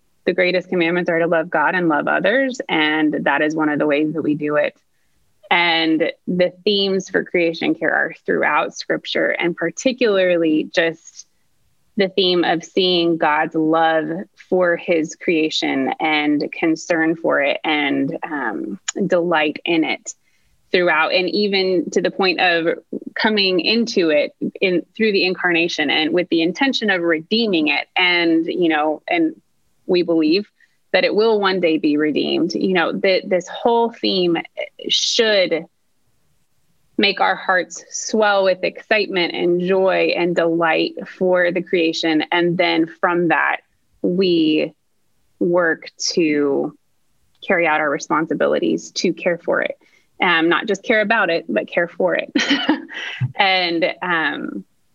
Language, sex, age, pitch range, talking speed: English, female, 20-39, 165-200 Hz, 145 wpm